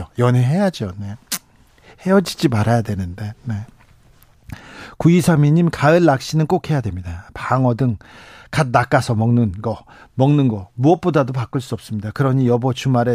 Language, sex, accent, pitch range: Korean, male, native, 125-170 Hz